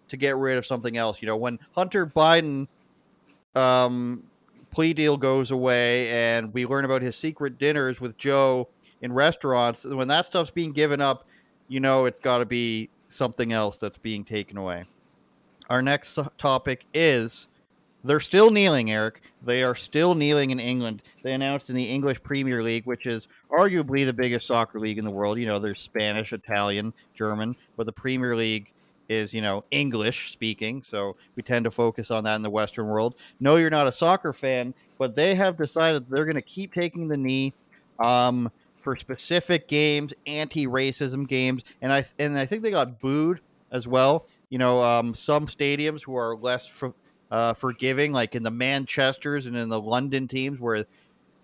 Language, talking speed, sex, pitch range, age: English, 185 wpm, male, 115-140 Hz, 40-59